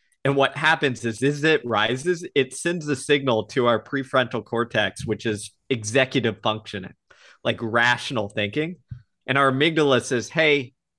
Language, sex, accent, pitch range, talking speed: English, male, American, 115-150 Hz, 145 wpm